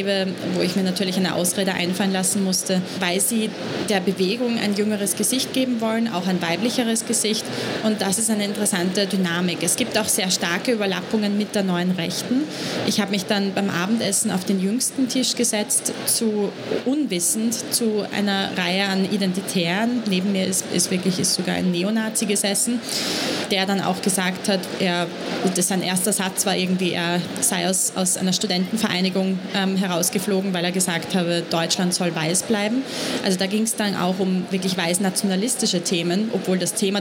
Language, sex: German, female